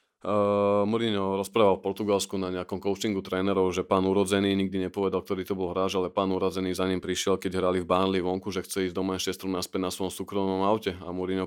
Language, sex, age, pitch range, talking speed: Slovak, male, 20-39, 95-110 Hz, 215 wpm